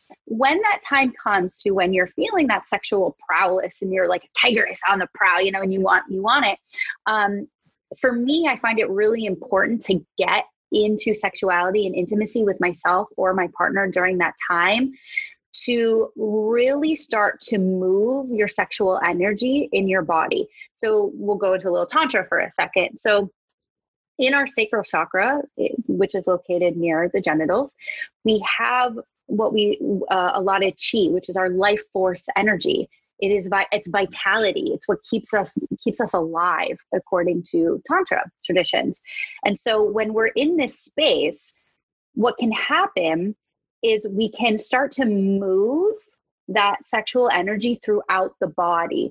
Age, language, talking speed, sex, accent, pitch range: 20-39, English, 165 wpm, female, American, 185-245 Hz